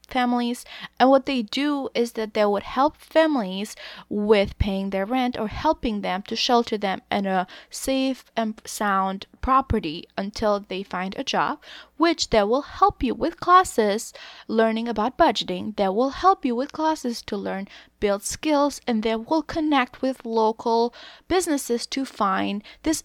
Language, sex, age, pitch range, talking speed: English, female, 20-39, 200-265 Hz, 160 wpm